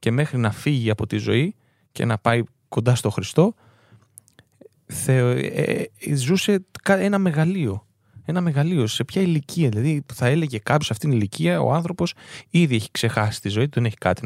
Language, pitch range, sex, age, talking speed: Greek, 115-155 Hz, male, 20-39, 175 wpm